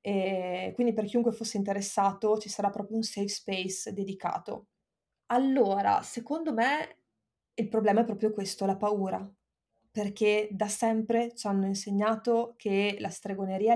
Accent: native